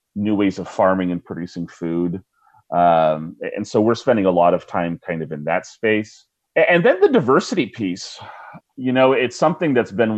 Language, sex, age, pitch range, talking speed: English, male, 30-49, 95-135 Hz, 190 wpm